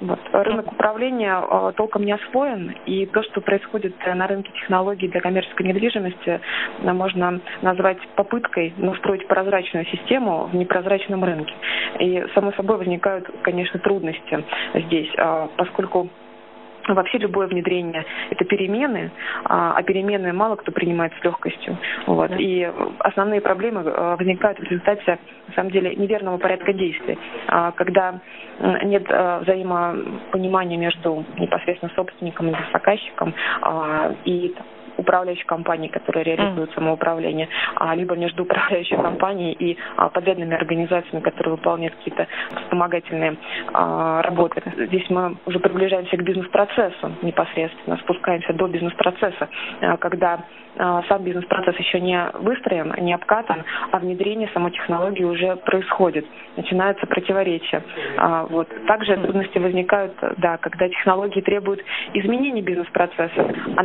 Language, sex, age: Russian, female, 20-39